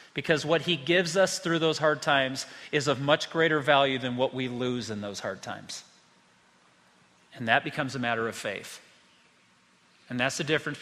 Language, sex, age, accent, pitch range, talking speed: English, male, 40-59, American, 140-205 Hz, 185 wpm